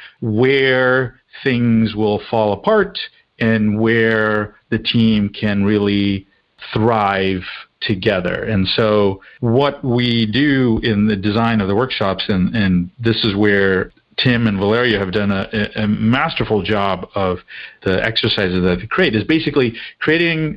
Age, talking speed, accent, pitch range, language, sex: 50-69, 135 wpm, American, 105-130 Hz, English, male